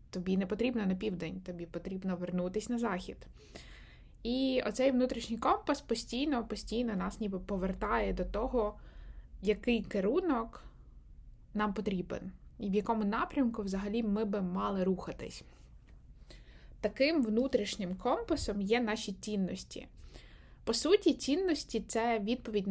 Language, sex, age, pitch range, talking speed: Ukrainian, female, 20-39, 195-245 Hz, 120 wpm